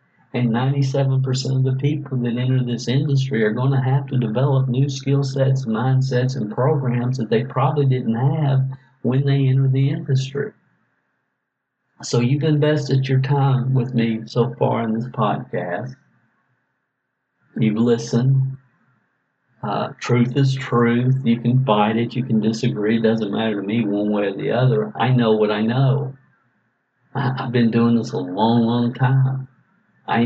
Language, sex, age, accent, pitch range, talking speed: English, male, 50-69, American, 115-135 Hz, 160 wpm